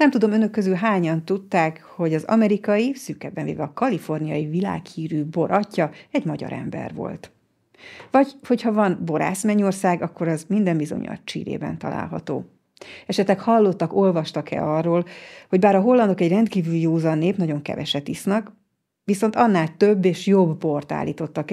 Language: Hungarian